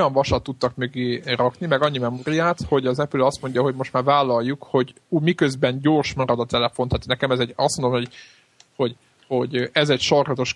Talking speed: 195 wpm